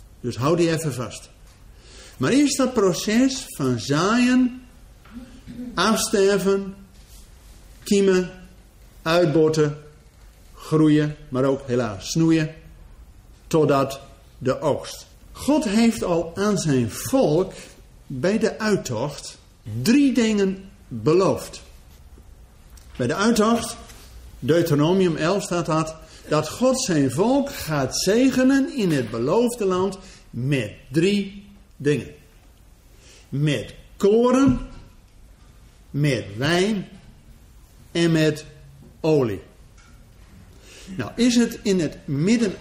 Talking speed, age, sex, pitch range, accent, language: 95 wpm, 50-69, male, 130-205 Hz, Dutch, Dutch